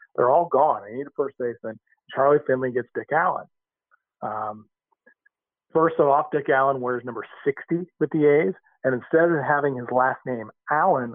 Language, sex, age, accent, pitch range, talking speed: English, male, 40-59, American, 120-160 Hz, 170 wpm